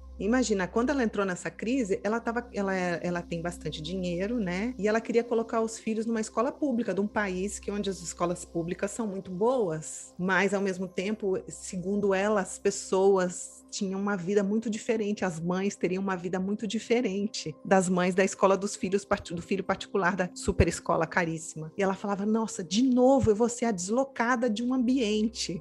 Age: 30-49